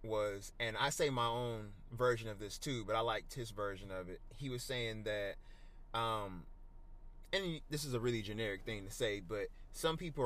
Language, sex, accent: English, male, American